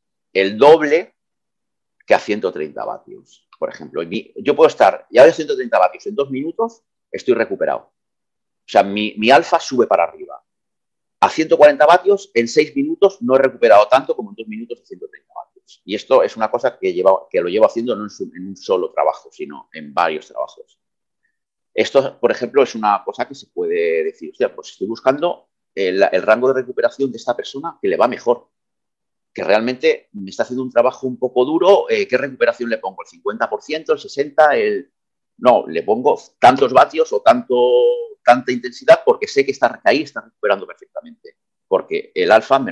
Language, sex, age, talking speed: Spanish, male, 30-49, 190 wpm